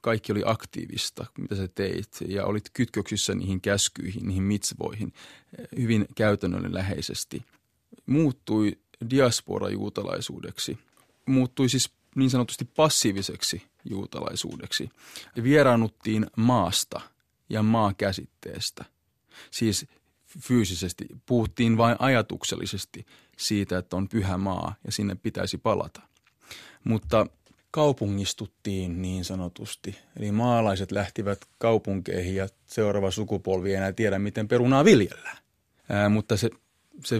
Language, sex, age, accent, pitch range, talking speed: Finnish, male, 30-49, native, 100-120 Hz, 105 wpm